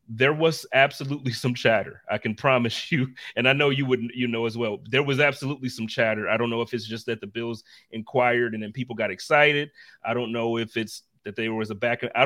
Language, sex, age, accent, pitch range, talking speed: English, male, 30-49, American, 115-135 Hz, 240 wpm